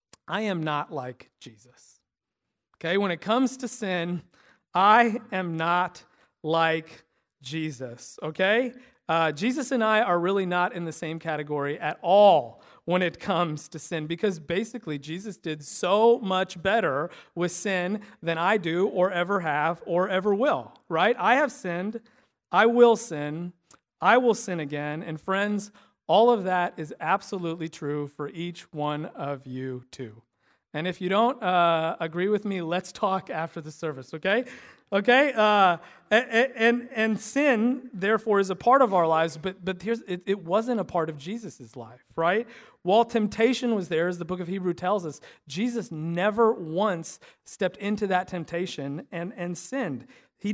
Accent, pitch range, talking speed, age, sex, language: American, 165-210 Hz, 165 wpm, 40-59, male, English